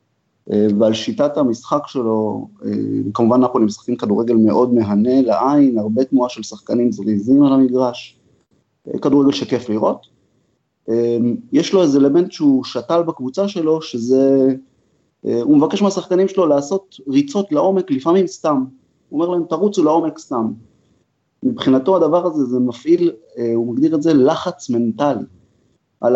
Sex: male